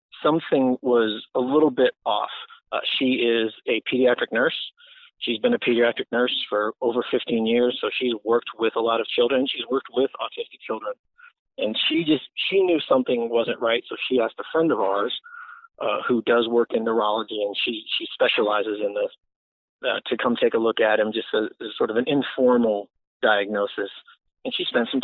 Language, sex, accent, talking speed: English, male, American, 195 wpm